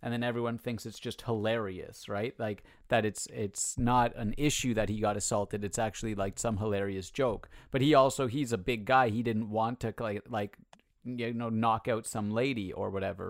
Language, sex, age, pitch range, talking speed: English, male, 30-49, 105-115 Hz, 210 wpm